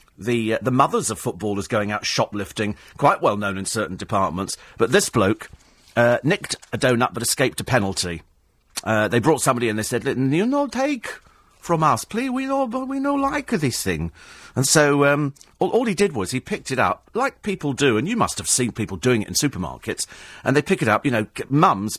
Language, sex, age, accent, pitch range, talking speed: English, male, 40-59, British, 115-165 Hz, 220 wpm